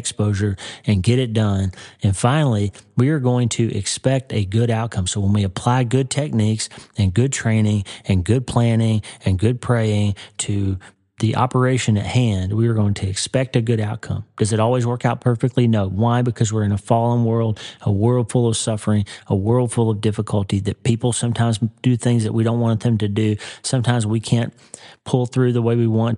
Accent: American